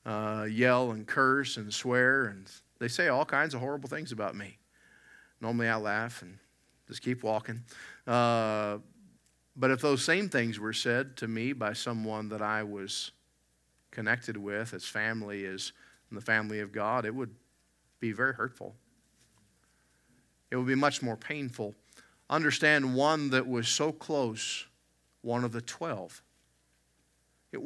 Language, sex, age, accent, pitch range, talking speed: English, male, 50-69, American, 110-145 Hz, 150 wpm